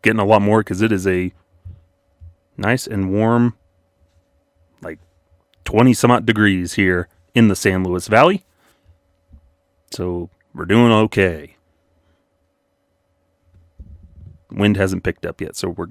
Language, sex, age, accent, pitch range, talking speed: English, male, 30-49, American, 90-110 Hz, 125 wpm